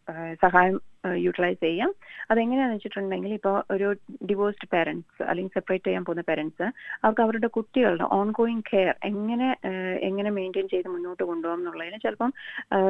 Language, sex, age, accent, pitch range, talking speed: Malayalam, female, 30-49, native, 180-220 Hz, 150 wpm